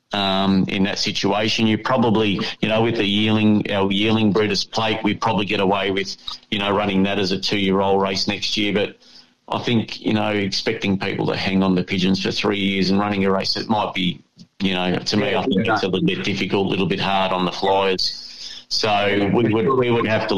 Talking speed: 235 wpm